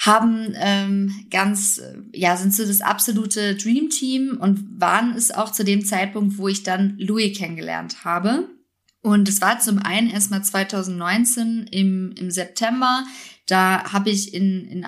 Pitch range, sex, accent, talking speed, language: 185-215 Hz, female, German, 150 wpm, German